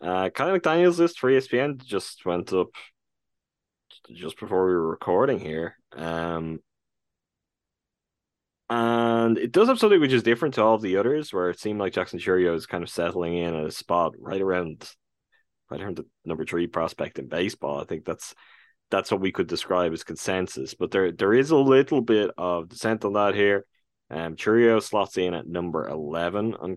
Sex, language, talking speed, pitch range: male, English, 185 wpm, 80-115 Hz